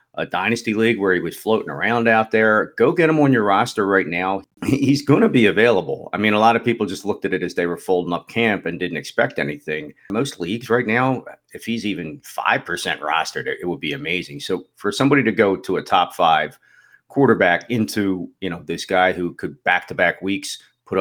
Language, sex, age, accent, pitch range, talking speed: English, male, 40-59, American, 90-115 Hz, 215 wpm